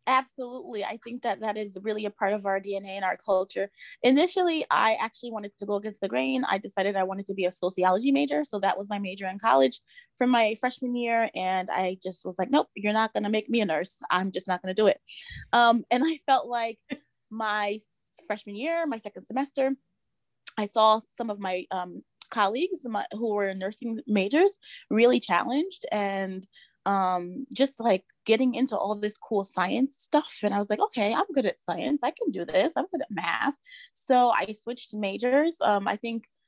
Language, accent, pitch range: English, American, 190-240 Hz